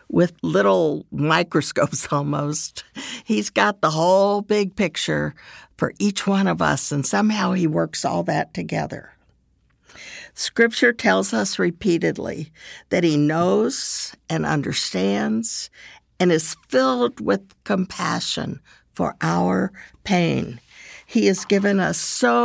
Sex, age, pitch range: female, 60-79, 140-205 Hz